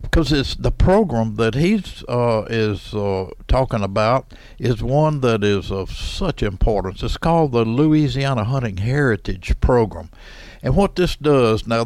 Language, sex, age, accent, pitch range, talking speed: English, male, 60-79, American, 110-135 Hz, 145 wpm